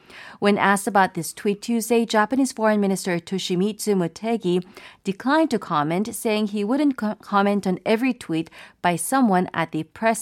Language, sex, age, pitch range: Korean, female, 40-59, 180-235 Hz